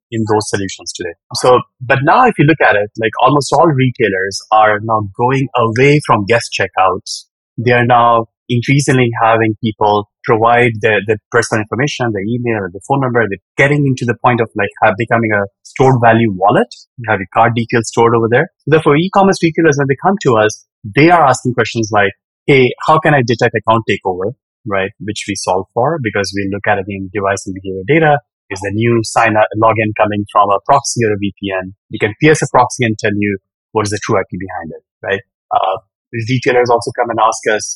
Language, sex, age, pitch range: English, male, 30-49, 105-130 Hz